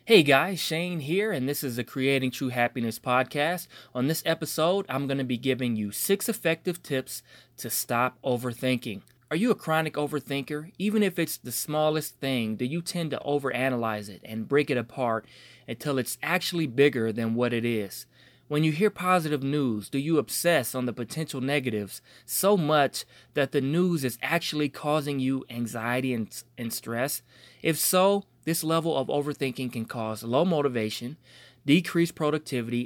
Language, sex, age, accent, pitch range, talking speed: English, male, 20-39, American, 125-160 Hz, 170 wpm